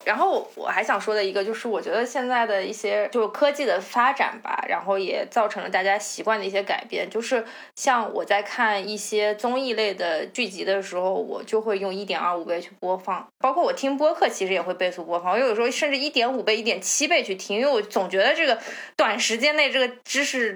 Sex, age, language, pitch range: female, 20-39, Chinese, 200-260 Hz